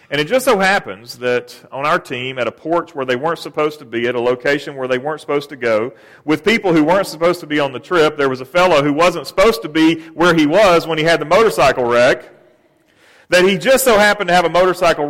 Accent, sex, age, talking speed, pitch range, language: American, male, 40-59, 255 wpm, 125-165 Hz, English